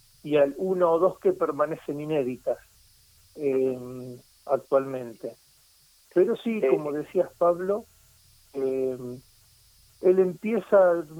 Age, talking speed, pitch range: 40-59, 95 wpm, 130-170 Hz